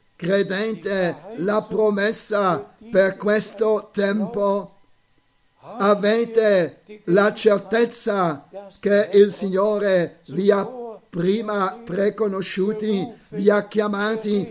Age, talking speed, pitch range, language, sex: 50-69, 80 wpm, 185-210 Hz, Italian, male